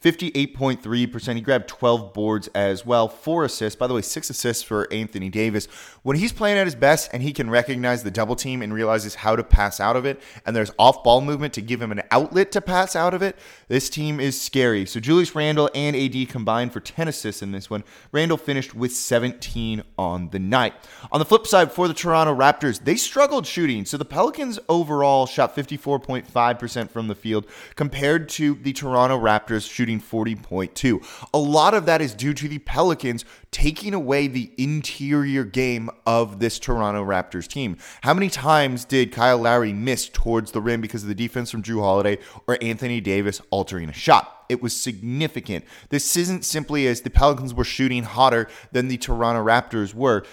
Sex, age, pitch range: male, 20-39, 110-145 Hz